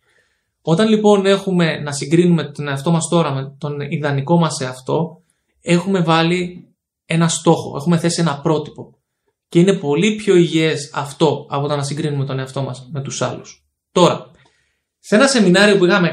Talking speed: 165 wpm